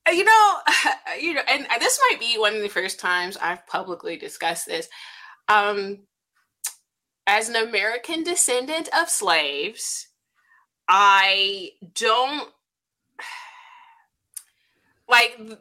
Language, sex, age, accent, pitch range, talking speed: English, female, 20-39, American, 175-265 Hz, 105 wpm